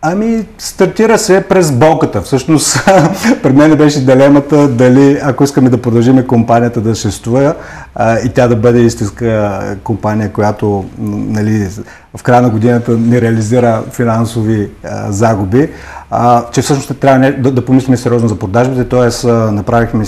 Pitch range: 110-140 Hz